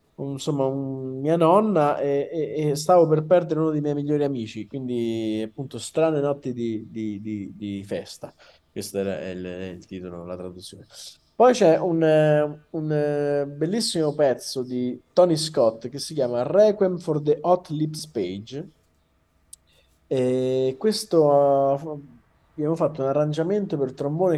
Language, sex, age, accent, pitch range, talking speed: Italian, male, 20-39, native, 110-155 Hz, 145 wpm